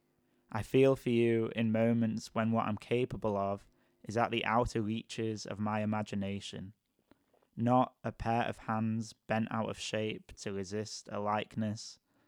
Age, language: 10-29, English